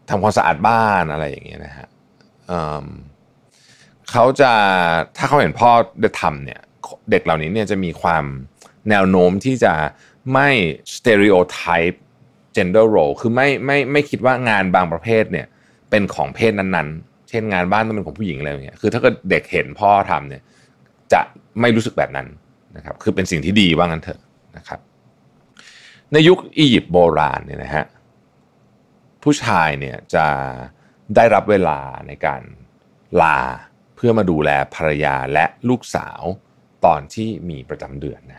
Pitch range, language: 75-115 Hz, Thai